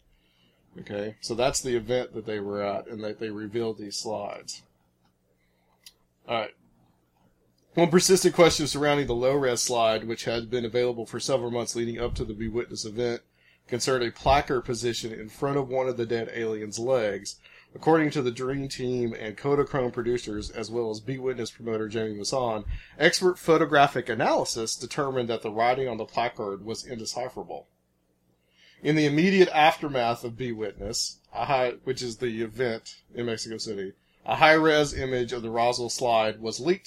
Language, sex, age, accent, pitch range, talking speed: English, male, 40-59, American, 110-135 Hz, 165 wpm